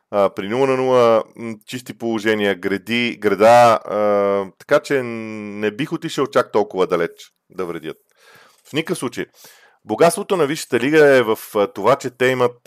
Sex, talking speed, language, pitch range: male, 160 wpm, Bulgarian, 110-140 Hz